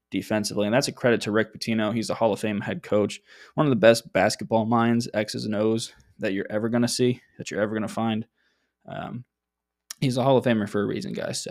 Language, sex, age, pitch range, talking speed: English, male, 20-39, 105-125 Hz, 245 wpm